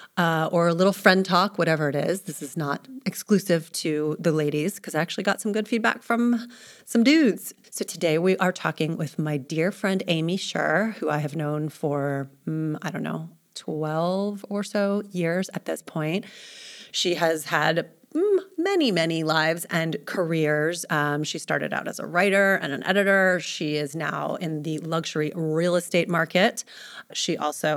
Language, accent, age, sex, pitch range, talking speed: English, American, 30-49, female, 155-205 Hz, 180 wpm